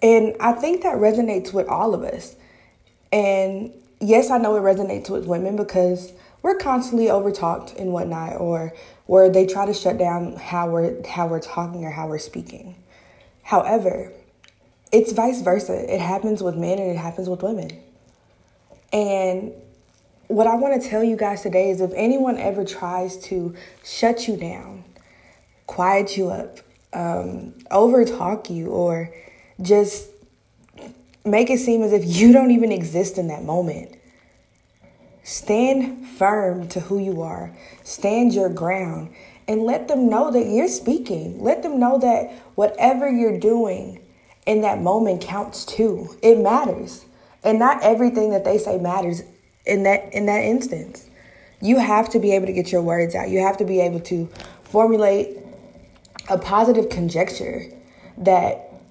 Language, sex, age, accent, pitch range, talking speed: English, female, 20-39, American, 180-225 Hz, 155 wpm